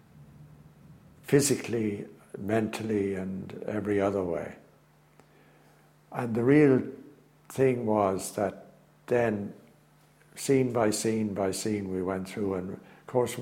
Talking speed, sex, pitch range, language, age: 105 wpm, male, 100-130 Hz, English, 60-79